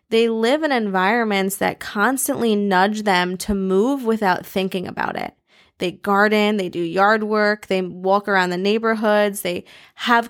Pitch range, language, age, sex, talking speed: 195-235 Hz, English, 20-39, female, 155 wpm